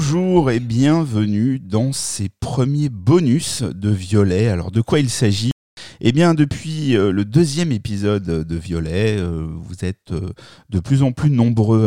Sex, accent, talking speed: male, French, 150 wpm